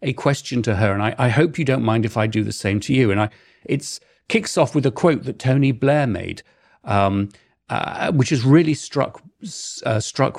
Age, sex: 40-59, male